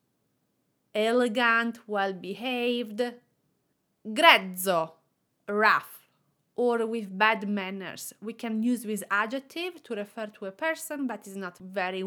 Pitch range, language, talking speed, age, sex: 195-275 Hz, English, 110 wpm, 30-49, female